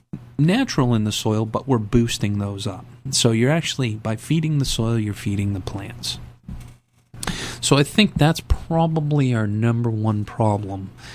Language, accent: English, American